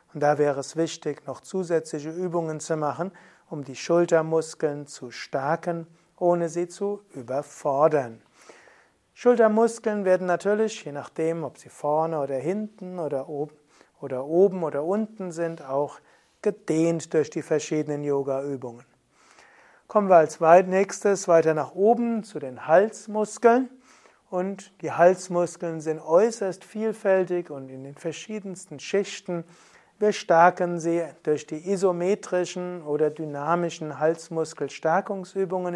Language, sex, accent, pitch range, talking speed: German, male, German, 150-185 Hz, 120 wpm